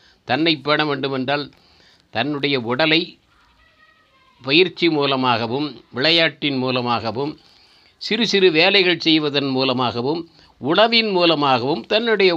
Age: 60-79